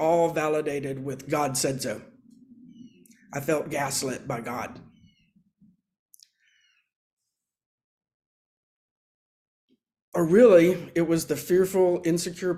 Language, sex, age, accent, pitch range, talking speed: English, male, 50-69, American, 145-170 Hz, 85 wpm